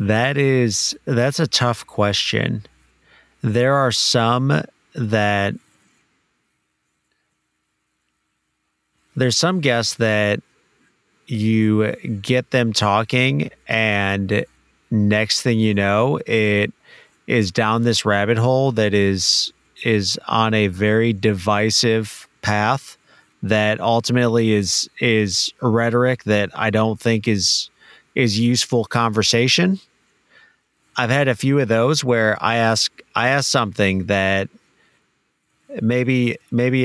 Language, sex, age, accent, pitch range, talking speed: English, male, 30-49, American, 105-125 Hz, 105 wpm